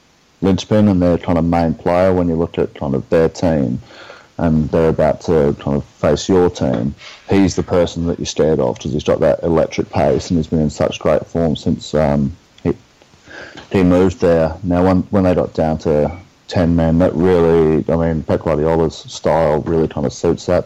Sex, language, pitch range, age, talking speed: male, English, 75-90 Hz, 30-49, 205 wpm